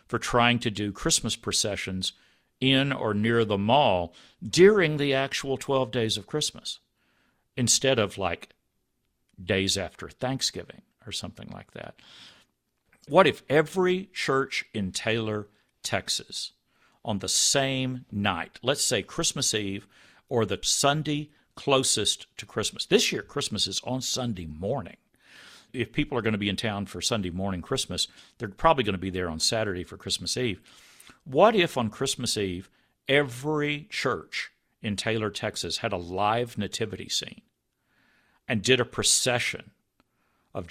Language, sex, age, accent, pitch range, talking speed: English, male, 50-69, American, 95-130 Hz, 145 wpm